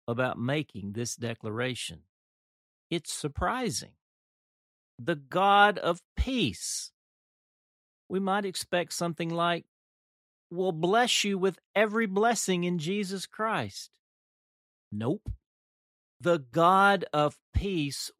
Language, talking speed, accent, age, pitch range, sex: English, 95 wpm, American, 50-69, 105-155 Hz, male